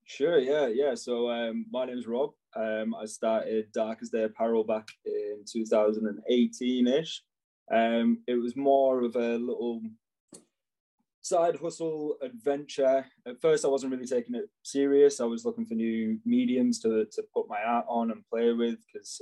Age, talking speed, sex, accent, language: 20-39, 170 wpm, male, British, English